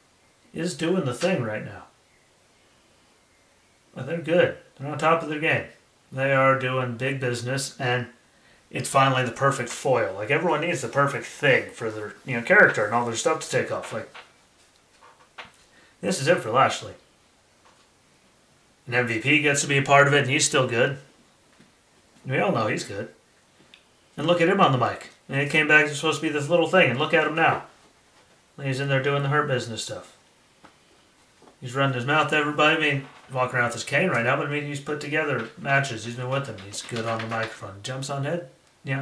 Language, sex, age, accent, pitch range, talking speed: English, male, 30-49, American, 125-150 Hz, 210 wpm